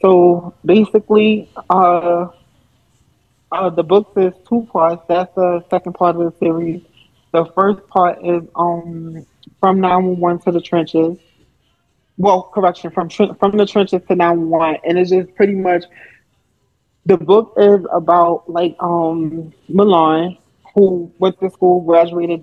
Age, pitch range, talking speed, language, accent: 20-39, 165-185 Hz, 145 wpm, English, American